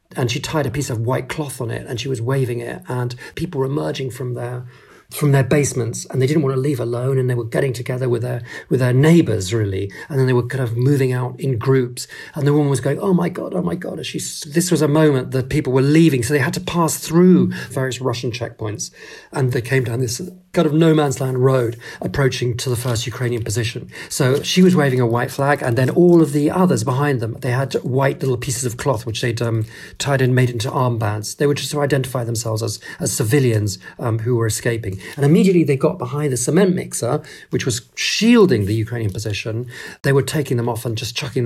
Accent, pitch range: British, 120-145 Hz